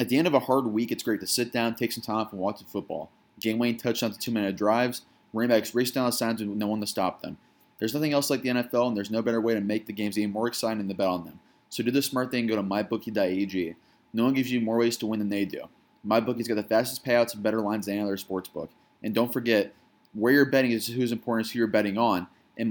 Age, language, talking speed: 20-39, English, 275 wpm